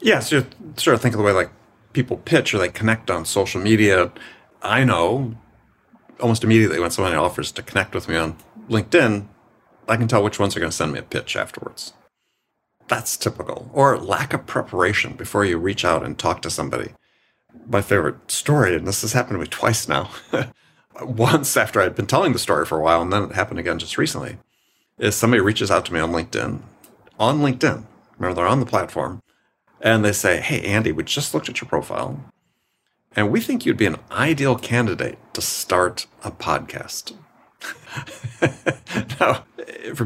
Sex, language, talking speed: male, English, 190 wpm